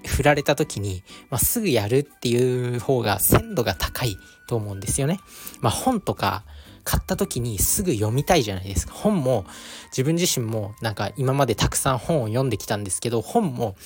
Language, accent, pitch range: Japanese, native, 105-145 Hz